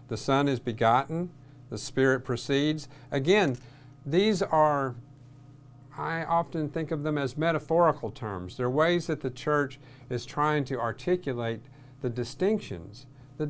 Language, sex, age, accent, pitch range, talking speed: English, male, 50-69, American, 115-140 Hz, 135 wpm